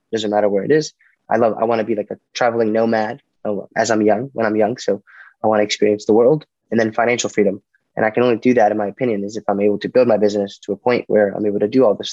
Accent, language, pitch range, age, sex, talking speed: American, English, 105-120 Hz, 20-39, male, 290 wpm